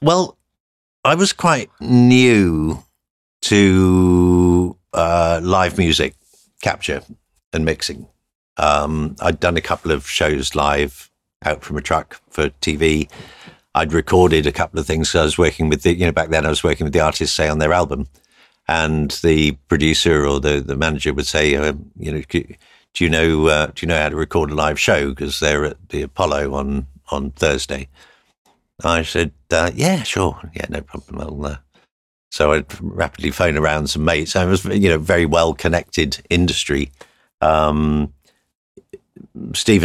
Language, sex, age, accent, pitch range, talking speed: English, male, 50-69, British, 75-90 Hz, 170 wpm